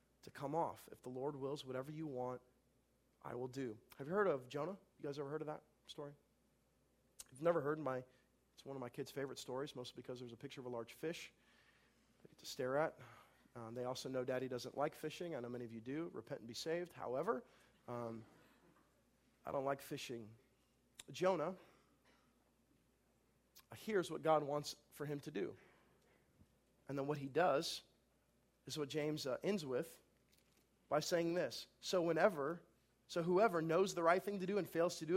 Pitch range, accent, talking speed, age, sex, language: 130-200 Hz, American, 195 wpm, 40-59, male, English